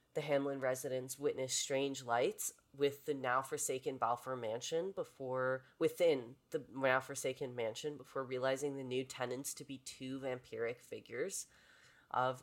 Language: English